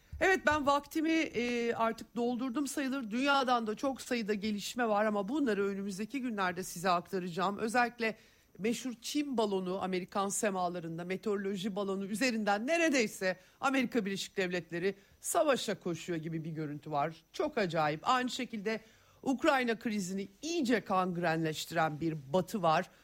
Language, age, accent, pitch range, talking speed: Turkish, 50-69, native, 170-225 Hz, 125 wpm